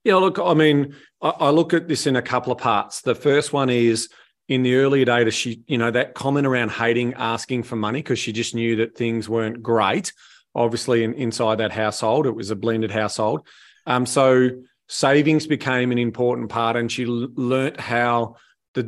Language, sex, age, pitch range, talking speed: English, male, 40-59, 120-140 Hz, 190 wpm